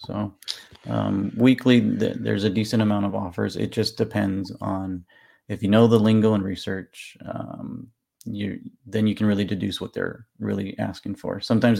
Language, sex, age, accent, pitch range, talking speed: English, male, 30-49, American, 100-115 Hz, 175 wpm